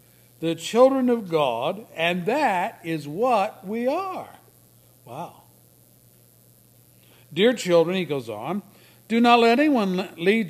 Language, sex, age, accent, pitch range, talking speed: English, male, 60-79, American, 155-225 Hz, 120 wpm